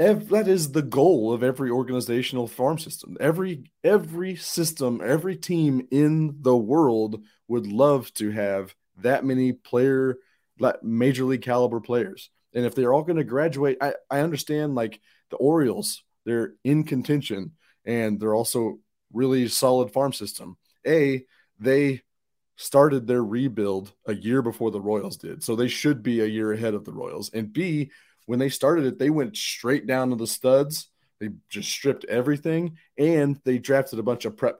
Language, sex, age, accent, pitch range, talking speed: English, male, 30-49, American, 115-140 Hz, 165 wpm